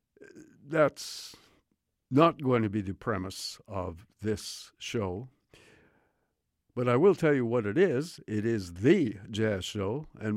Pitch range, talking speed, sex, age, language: 90-120 Hz, 140 wpm, male, 60-79, English